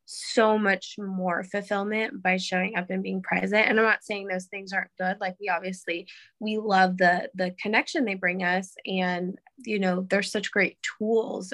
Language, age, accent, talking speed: English, 20-39, American, 185 wpm